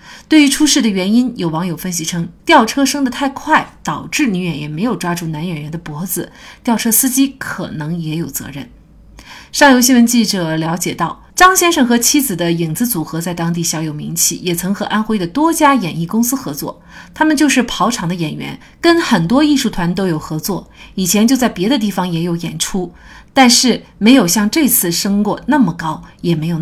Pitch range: 175-265 Hz